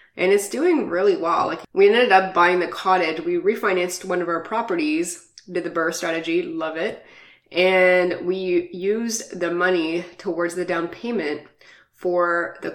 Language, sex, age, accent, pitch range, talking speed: English, female, 20-39, American, 170-200 Hz, 165 wpm